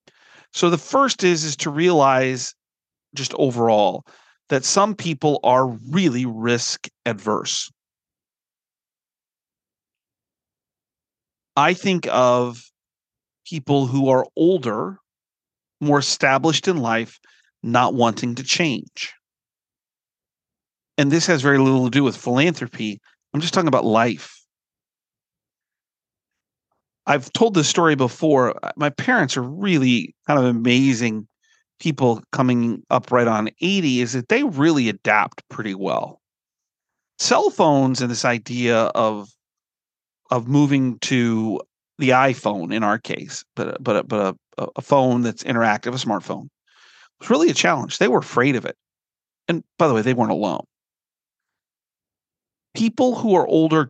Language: English